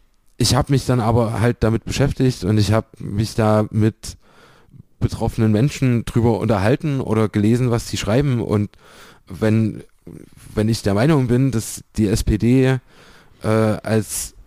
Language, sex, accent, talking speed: German, male, German, 145 wpm